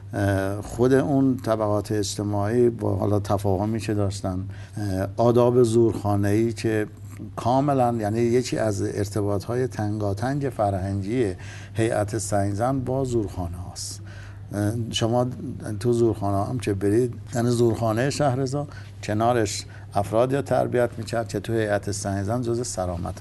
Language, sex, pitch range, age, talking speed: Persian, male, 100-120 Hz, 60-79, 110 wpm